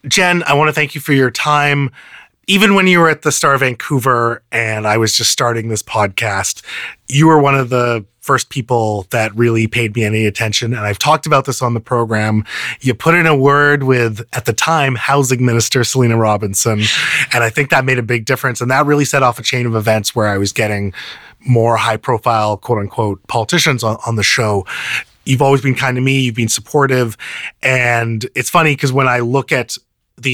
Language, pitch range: English, 115-145 Hz